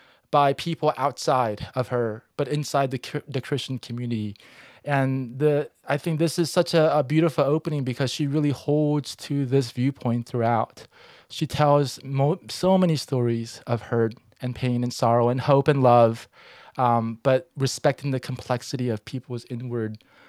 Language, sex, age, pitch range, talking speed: English, male, 20-39, 120-145 Hz, 160 wpm